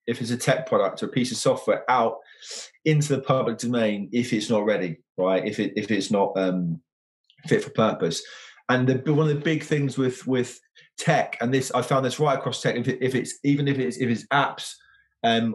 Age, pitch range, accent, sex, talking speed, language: 20-39, 105-140 Hz, British, male, 225 wpm, English